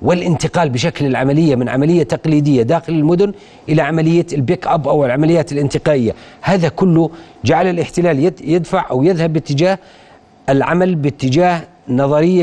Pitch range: 150-180 Hz